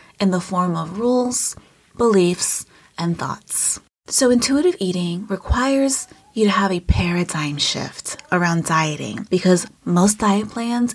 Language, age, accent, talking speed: English, 30-49, American, 130 wpm